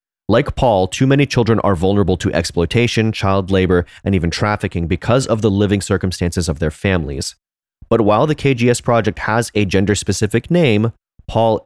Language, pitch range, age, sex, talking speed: English, 95-120 Hz, 30-49, male, 165 wpm